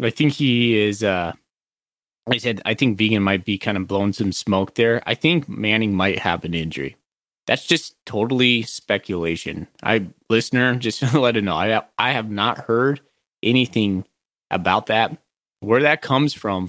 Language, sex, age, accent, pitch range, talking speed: English, male, 30-49, American, 100-120 Hz, 170 wpm